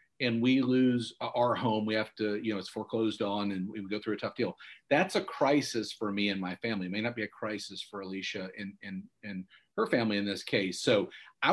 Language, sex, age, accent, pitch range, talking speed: English, male, 40-59, American, 110-155 Hz, 240 wpm